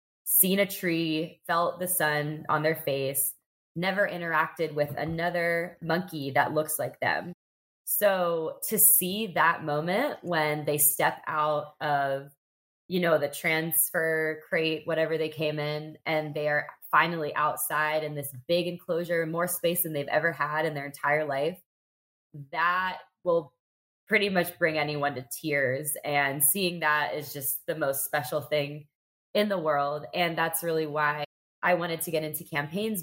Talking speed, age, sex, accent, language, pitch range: 155 wpm, 20-39, female, American, English, 145-165 Hz